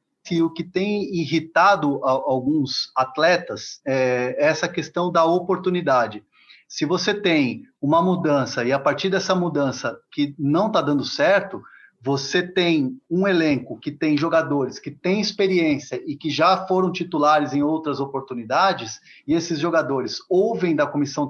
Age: 30-49